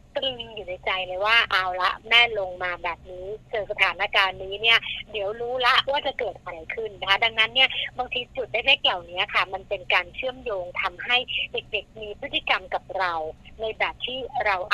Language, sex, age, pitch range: Thai, female, 30-49, 190-245 Hz